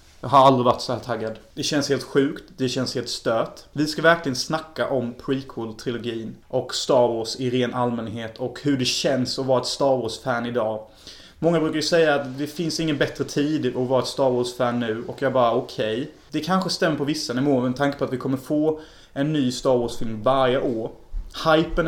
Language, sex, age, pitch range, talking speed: Swedish, male, 30-49, 120-155 Hz, 215 wpm